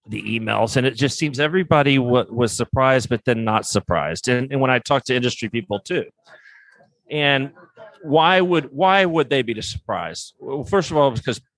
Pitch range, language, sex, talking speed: 120-155 Hz, English, male, 185 wpm